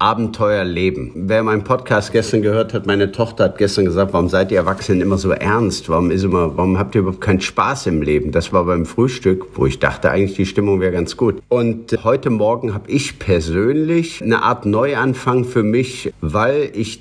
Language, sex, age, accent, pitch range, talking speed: German, male, 50-69, German, 95-110 Hz, 195 wpm